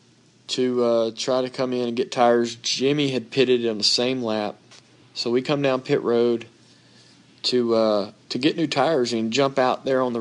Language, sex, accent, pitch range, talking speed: English, male, American, 110-125 Hz, 200 wpm